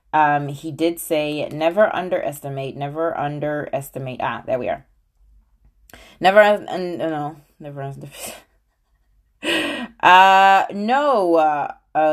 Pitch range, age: 135-220 Hz, 20-39